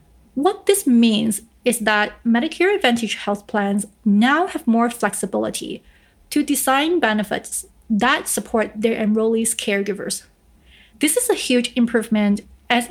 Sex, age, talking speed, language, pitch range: female, 30-49, 125 wpm, English, 215-260 Hz